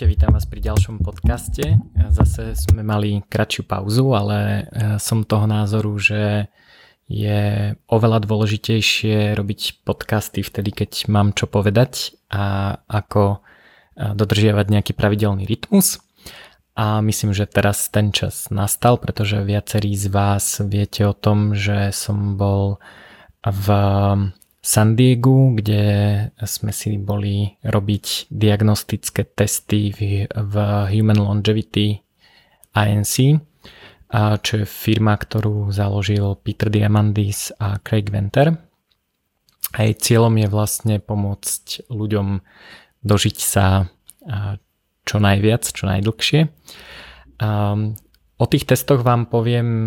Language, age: Slovak, 20-39